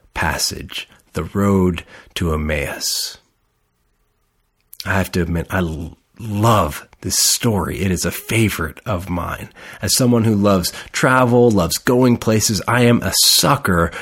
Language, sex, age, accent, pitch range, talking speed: English, male, 40-59, American, 85-115 Hz, 135 wpm